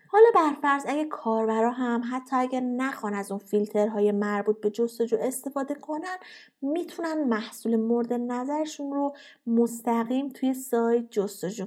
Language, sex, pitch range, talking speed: Persian, female, 215-270 Hz, 130 wpm